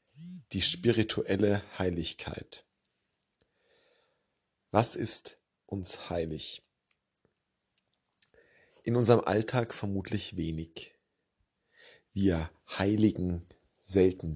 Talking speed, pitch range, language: 65 wpm, 90-110 Hz, German